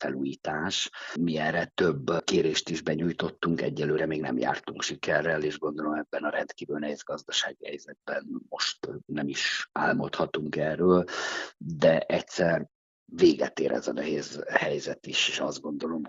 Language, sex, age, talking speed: Hungarian, male, 50-69, 140 wpm